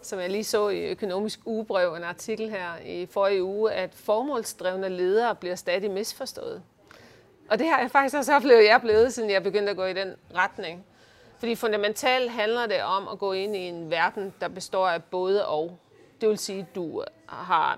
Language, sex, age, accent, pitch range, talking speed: Danish, female, 30-49, native, 180-220 Hz, 200 wpm